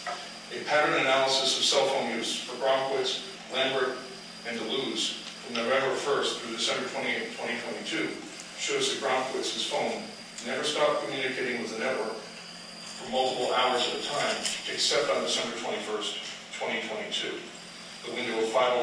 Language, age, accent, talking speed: English, 50-69, American, 135 wpm